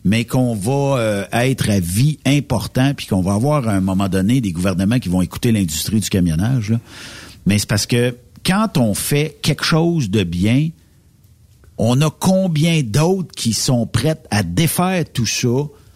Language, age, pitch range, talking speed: French, 50-69, 100-145 Hz, 180 wpm